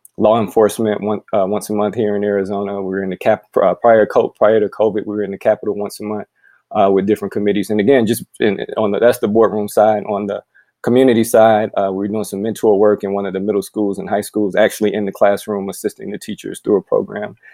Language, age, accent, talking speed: English, 20-39, American, 255 wpm